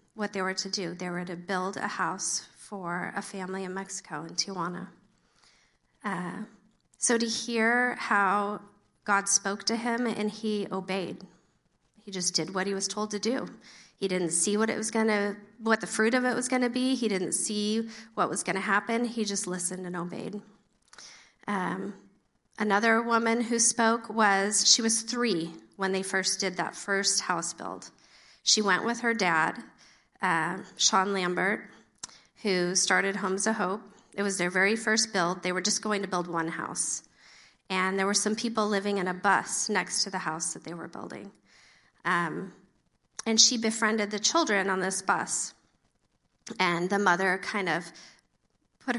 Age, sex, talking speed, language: 40-59, female, 175 wpm, English